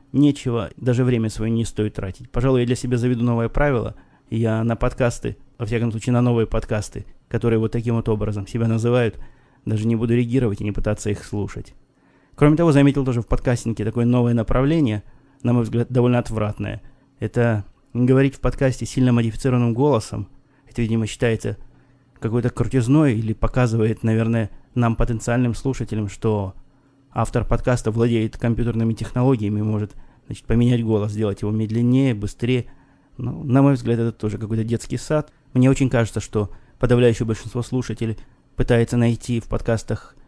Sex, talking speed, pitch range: male, 155 wpm, 110-125 Hz